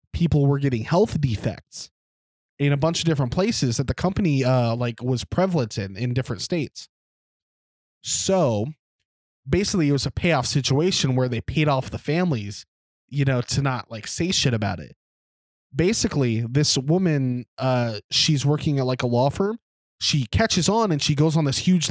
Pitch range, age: 120-155 Hz, 20-39